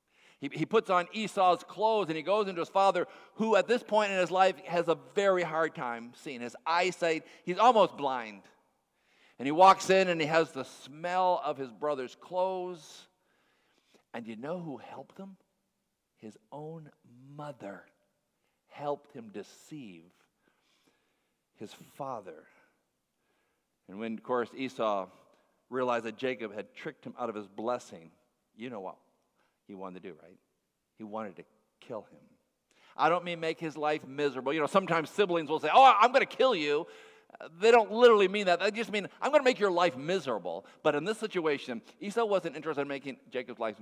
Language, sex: English, male